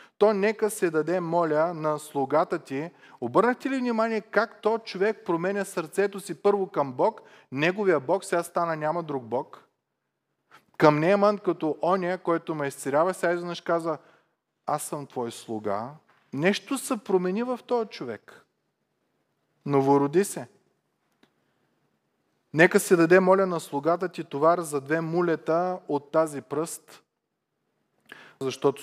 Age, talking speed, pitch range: 30-49, 135 wpm, 125-170 Hz